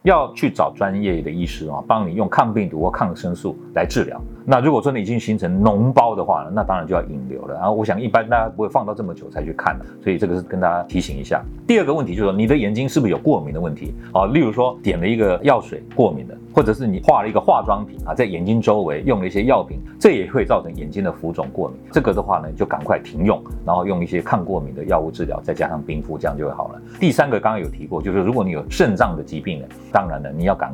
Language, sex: Chinese, male